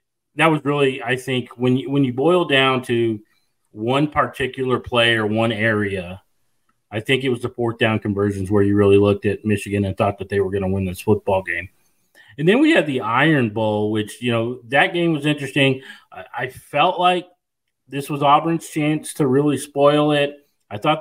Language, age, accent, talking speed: English, 30-49, American, 205 wpm